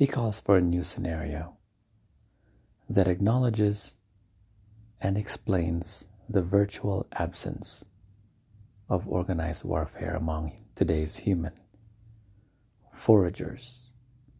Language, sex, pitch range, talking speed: English, male, 90-110 Hz, 85 wpm